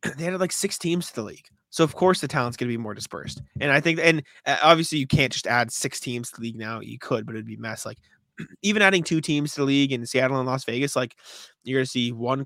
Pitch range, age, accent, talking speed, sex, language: 125-150 Hz, 20-39, American, 285 wpm, male, English